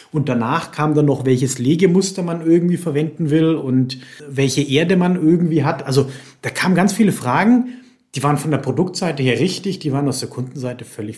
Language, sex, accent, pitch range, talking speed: German, male, German, 135-175 Hz, 195 wpm